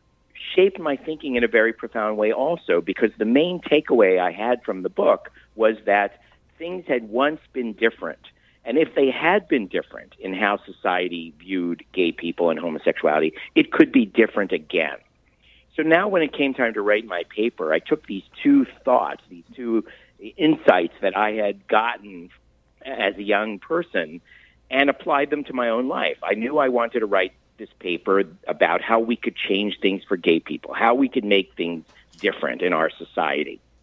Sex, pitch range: male, 95-145 Hz